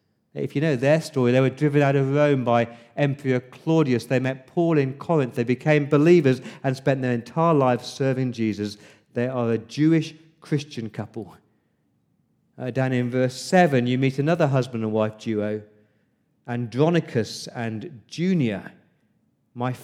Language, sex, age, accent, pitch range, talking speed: English, male, 40-59, British, 125-160 Hz, 155 wpm